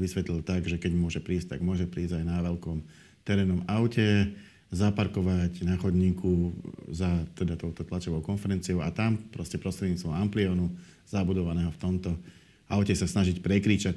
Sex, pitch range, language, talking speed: male, 85-100 Hz, Slovak, 145 wpm